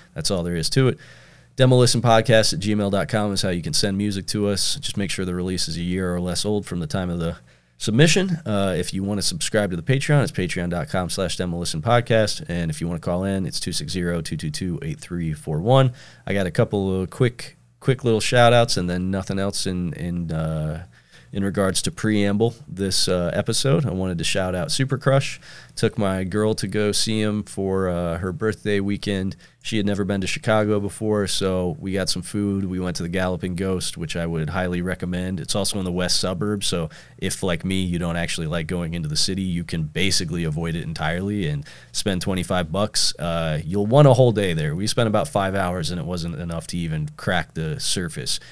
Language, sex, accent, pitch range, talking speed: English, male, American, 85-105 Hz, 215 wpm